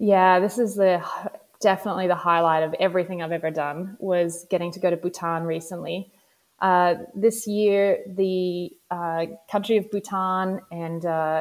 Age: 20-39